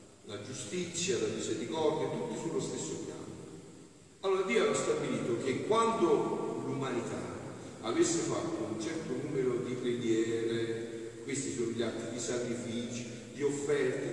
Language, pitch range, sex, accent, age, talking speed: Italian, 115-185 Hz, male, native, 40-59, 125 wpm